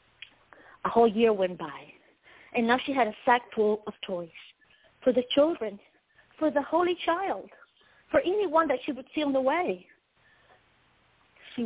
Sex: female